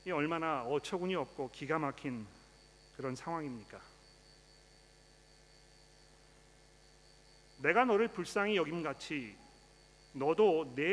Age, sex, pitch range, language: 40-59, male, 145-185 Hz, Korean